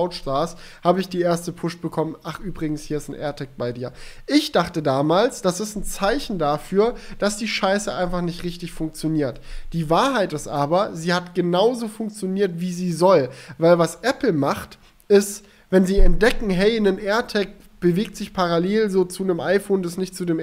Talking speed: 185 wpm